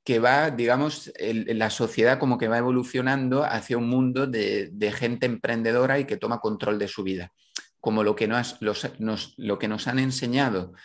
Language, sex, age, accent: Spanish, male, 30-49, Spanish